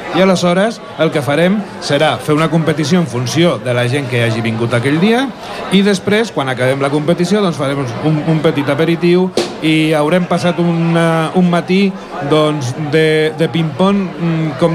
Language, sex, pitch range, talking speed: Italian, male, 150-185 Hz, 170 wpm